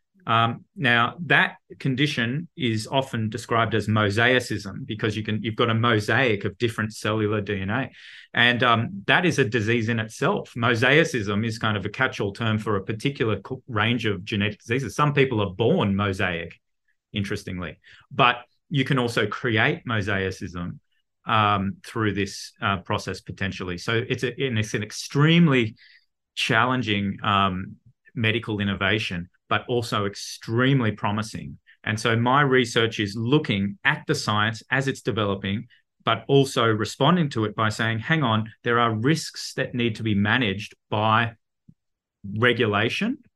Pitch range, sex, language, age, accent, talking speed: 105-130 Hz, male, English, 30-49, Australian, 150 wpm